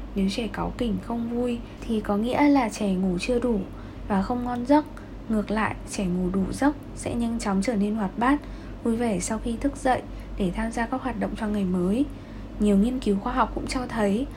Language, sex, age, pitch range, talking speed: Vietnamese, female, 10-29, 200-260 Hz, 225 wpm